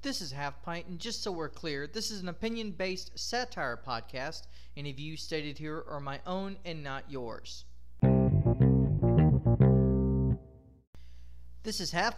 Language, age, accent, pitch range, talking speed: English, 30-49, American, 125-200 Hz, 140 wpm